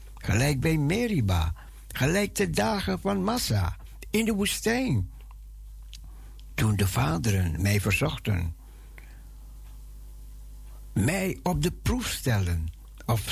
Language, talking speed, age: Dutch, 100 wpm, 60-79